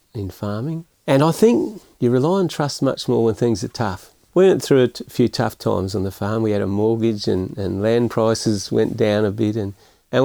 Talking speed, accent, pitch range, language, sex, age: 235 wpm, Australian, 110-135 Hz, English, male, 50-69